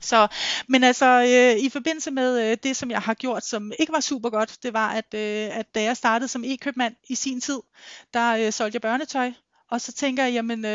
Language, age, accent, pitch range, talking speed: Danish, 30-49, native, 210-245 Hz, 230 wpm